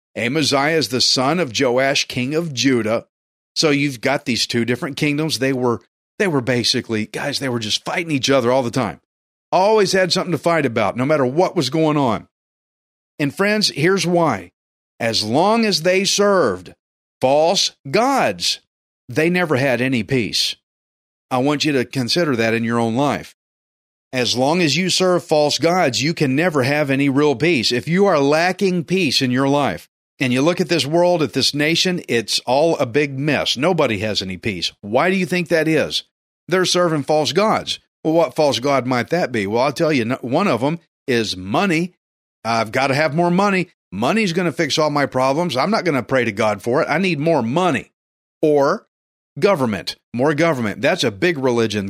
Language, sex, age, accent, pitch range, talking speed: English, male, 50-69, American, 125-170 Hz, 195 wpm